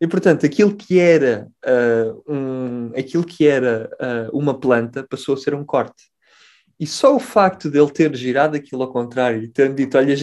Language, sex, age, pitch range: Portuguese, male, 20-39, 120-150 Hz